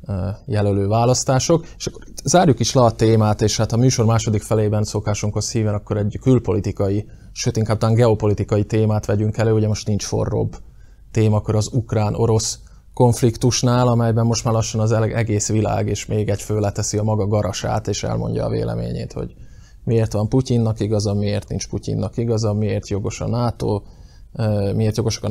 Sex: male